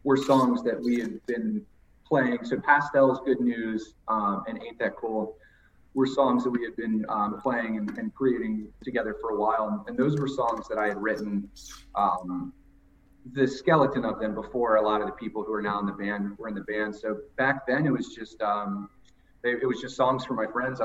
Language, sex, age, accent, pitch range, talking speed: English, male, 30-49, American, 105-130 Hz, 215 wpm